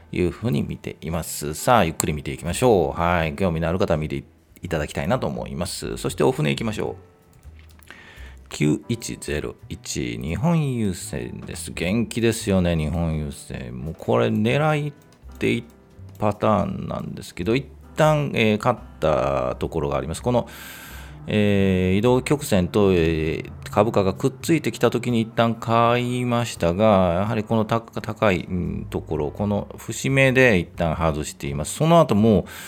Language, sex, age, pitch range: Japanese, male, 40-59, 80-115 Hz